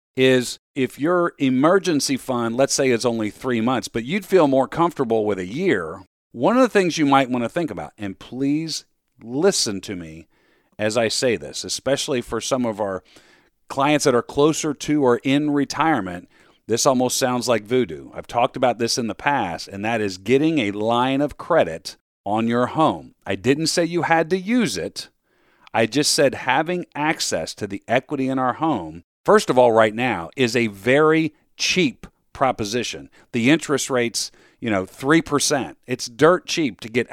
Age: 40-59